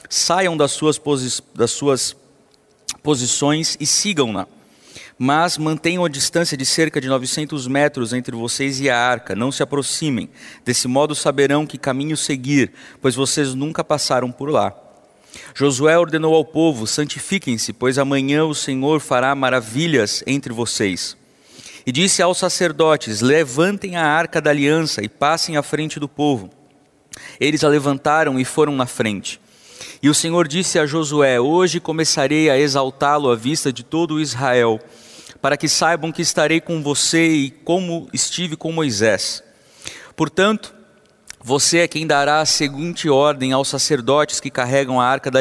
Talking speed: 150 wpm